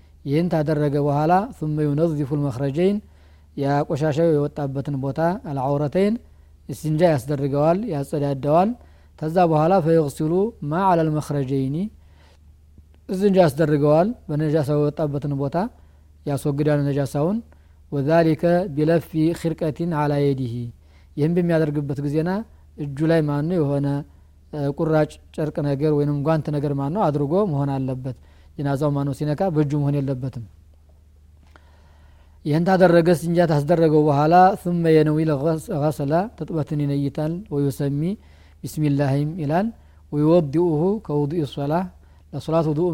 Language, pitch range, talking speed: Amharic, 140-160 Hz, 100 wpm